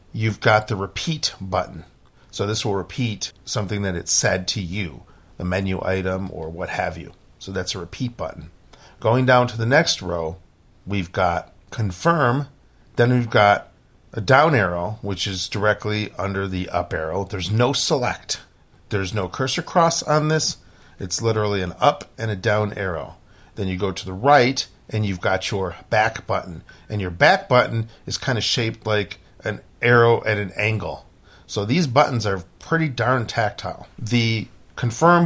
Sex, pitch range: male, 95-120 Hz